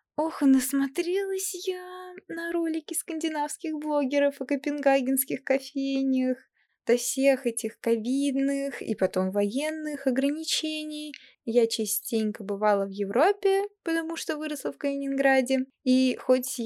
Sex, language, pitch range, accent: female, Russian, 225-275 Hz, native